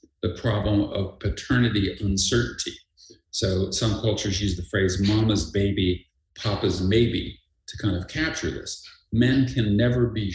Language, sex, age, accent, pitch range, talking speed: English, male, 50-69, American, 95-115 Hz, 140 wpm